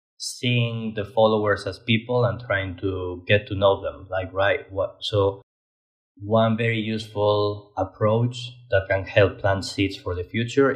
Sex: male